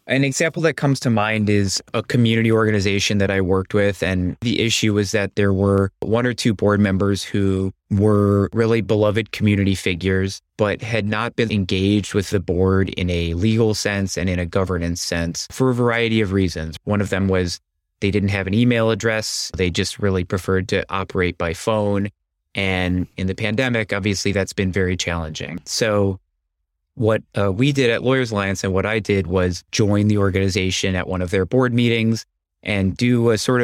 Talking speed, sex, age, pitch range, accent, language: 190 wpm, male, 20-39, 95-110 Hz, American, English